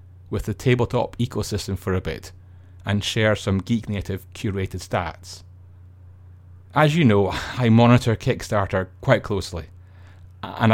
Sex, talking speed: male, 130 wpm